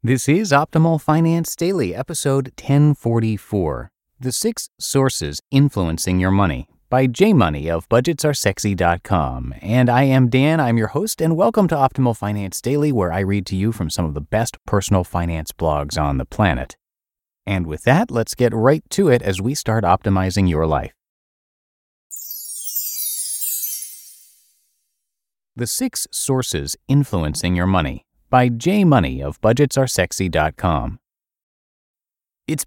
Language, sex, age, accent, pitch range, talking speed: English, male, 30-49, American, 90-130 Hz, 135 wpm